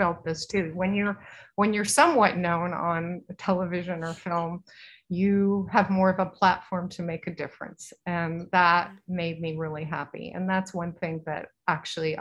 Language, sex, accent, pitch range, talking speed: English, female, American, 165-190 Hz, 160 wpm